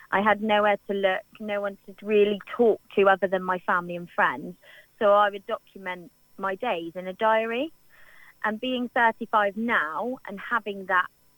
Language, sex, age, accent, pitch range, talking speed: English, female, 20-39, British, 180-215 Hz, 175 wpm